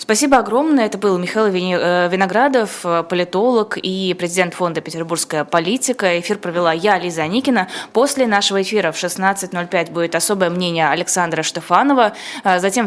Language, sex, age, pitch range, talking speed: Russian, female, 20-39, 165-200 Hz, 135 wpm